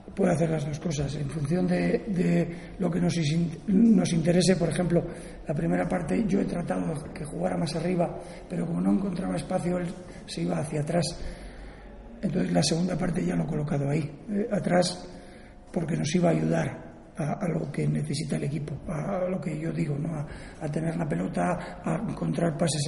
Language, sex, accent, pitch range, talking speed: Spanish, male, Spanish, 155-185 Hz, 190 wpm